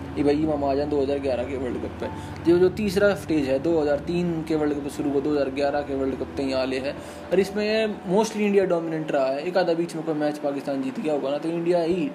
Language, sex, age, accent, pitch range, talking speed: Hindi, male, 20-39, native, 145-175 Hz, 240 wpm